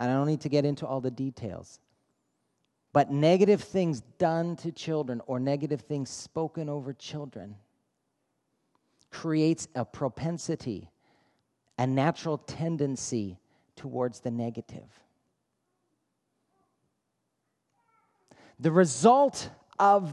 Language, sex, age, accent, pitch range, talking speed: English, male, 40-59, American, 130-175 Hz, 100 wpm